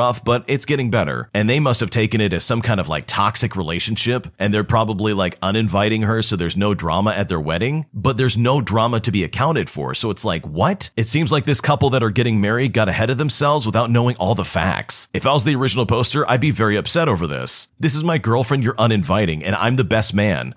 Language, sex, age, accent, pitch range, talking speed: English, male, 40-59, American, 100-130 Hz, 240 wpm